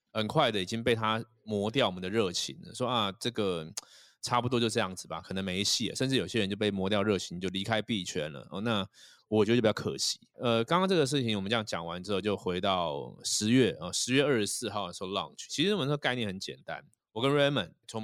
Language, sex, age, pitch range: Chinese, male, 20-39, 100-140 Hz